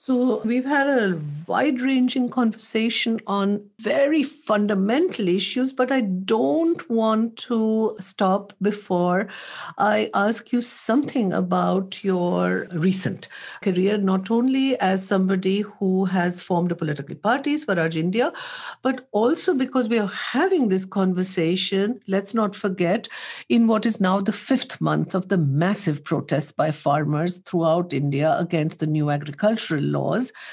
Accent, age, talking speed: Indian, 60-79, 135 wpm